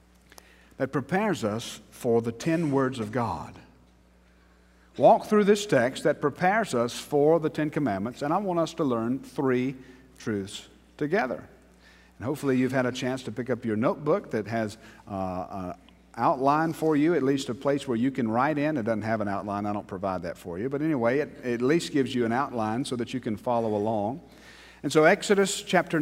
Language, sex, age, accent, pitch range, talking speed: English, male, 50-69, American, 105-145 Hz, 200 wpm